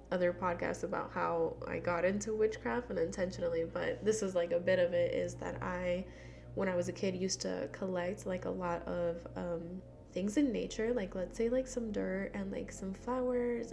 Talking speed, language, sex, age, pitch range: 205 wpm, English, female, 10-29, 175-220 Hz